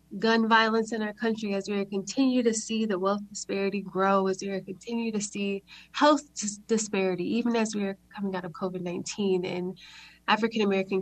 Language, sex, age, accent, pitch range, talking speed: English, female, 20-39, American, 195-235 Hz, 170 wpm